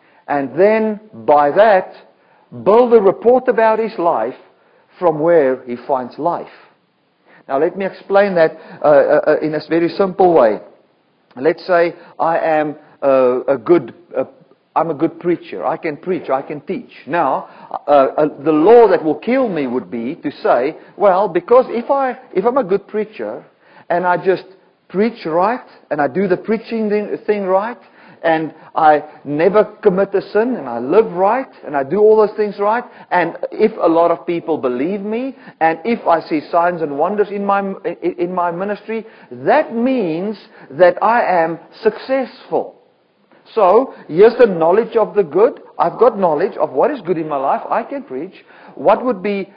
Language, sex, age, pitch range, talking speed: English, male, 50-69, 160-220 Hz, 175 wpm